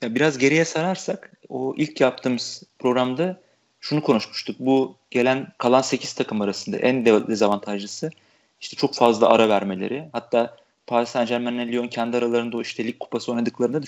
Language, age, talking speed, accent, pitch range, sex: Turkish, 40-59, 145 wpm, native, 120-150 Hz, male